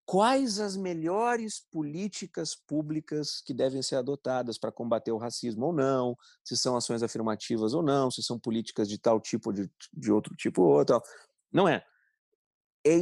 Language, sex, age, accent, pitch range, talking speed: Portuguese, male, 40-59, Brazilian, 115-175 Hz, 170 wpm